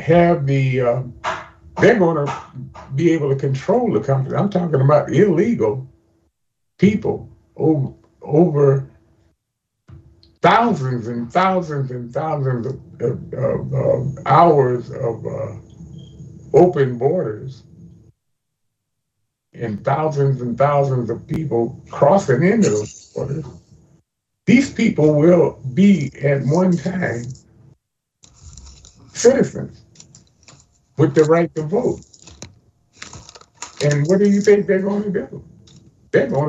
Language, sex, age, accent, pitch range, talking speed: English, male, 60-79, American, 125-165 Hz, 110 wpm